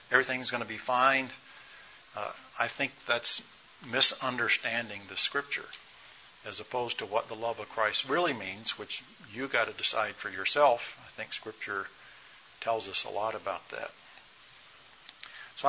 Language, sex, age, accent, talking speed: English, male, 60-79, American, 150 wpm